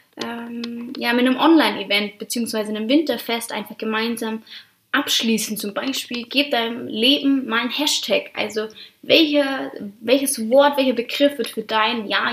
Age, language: 20-39, German